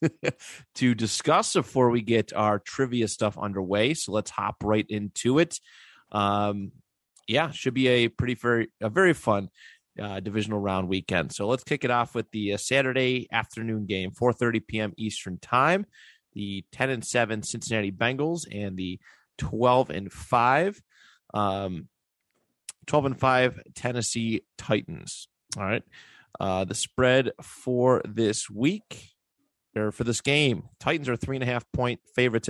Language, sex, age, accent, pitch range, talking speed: English, male, 30-49, American, 105-130 Hz, 145 wpm